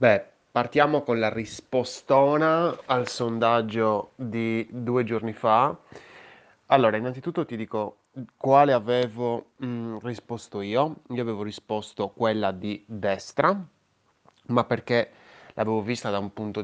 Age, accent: 20-39, native